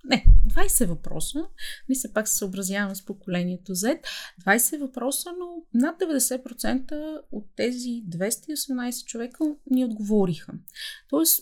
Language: Bulgarian